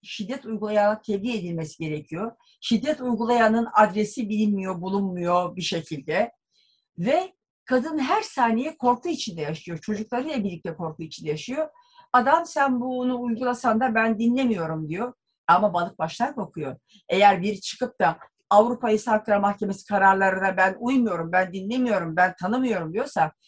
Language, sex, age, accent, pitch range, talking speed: Turkish, female, 50-69, native, 190-245 Hz, 135 wpm